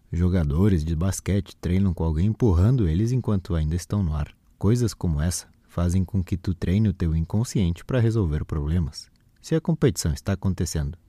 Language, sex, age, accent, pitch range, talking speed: Portuguese, male, 20-39, Brazilian, 80-110 Hz, 175 wpm